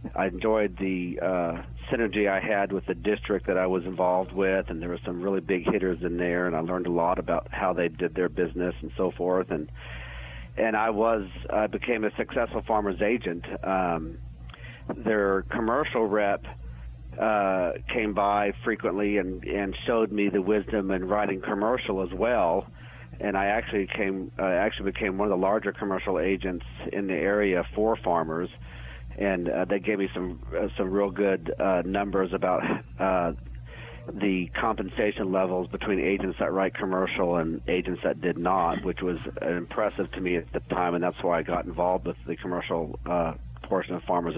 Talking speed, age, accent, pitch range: 180 wpm, 50-69, American, 85-105 Hz